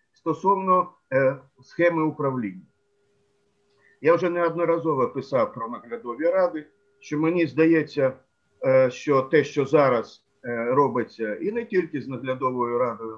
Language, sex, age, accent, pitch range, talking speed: Ukrainian, male, 50-69, native, 135-175 Hz, 110 wpm